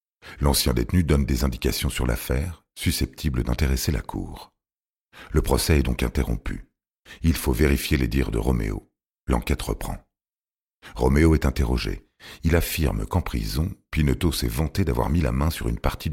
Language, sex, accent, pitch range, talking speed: French, male, French, 65-80 Hz, 155 wpm